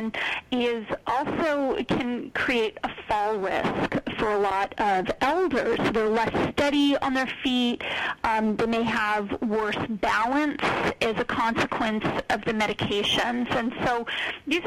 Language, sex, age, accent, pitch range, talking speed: English, female, 40-59, American, 225-290 Hz, 135 wpm